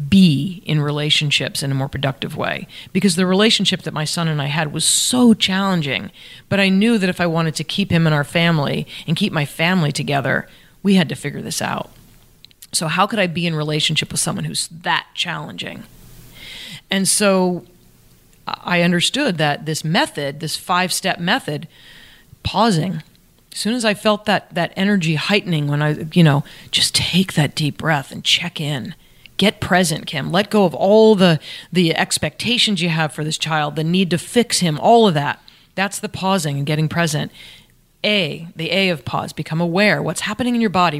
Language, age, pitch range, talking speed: English, 30-49, 155-195 Hz, 190 wpm